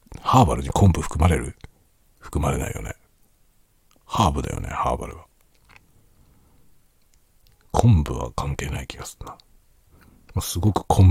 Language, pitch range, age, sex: Japanese, 75-100 Hz, 60-79, male